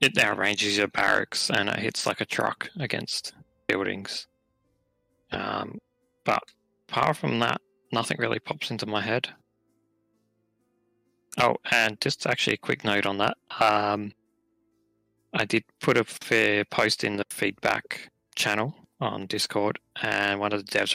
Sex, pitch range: male, 100-110 Hz